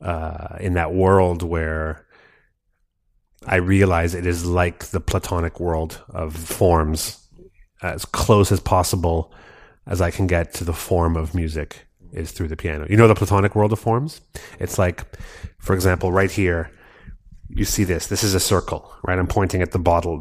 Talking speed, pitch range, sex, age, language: 170 wpm, 90-110 Hz, male, 30-49, German